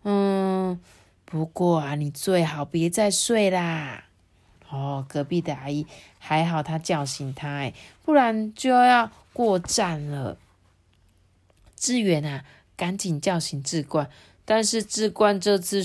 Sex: female